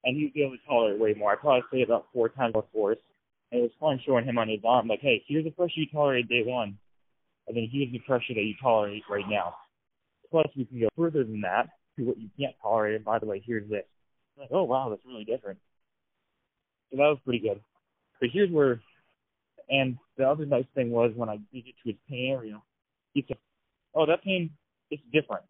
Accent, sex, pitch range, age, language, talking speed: American, male, 110-135 Hz, 20-39, English, 235 wpm